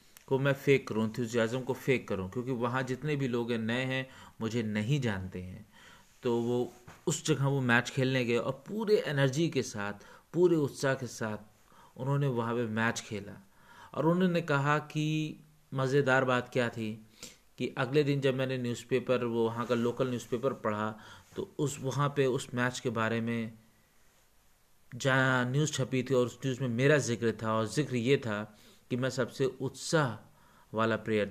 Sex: male